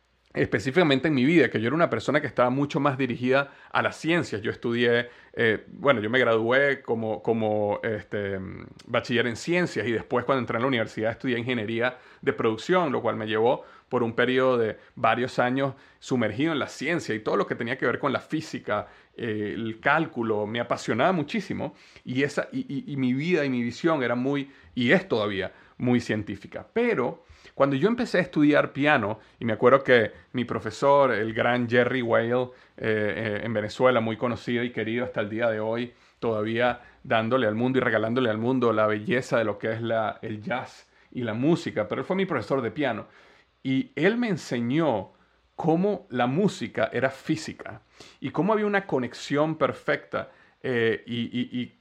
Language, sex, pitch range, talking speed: Spanish, male, 115-140 Hz, 185 wpm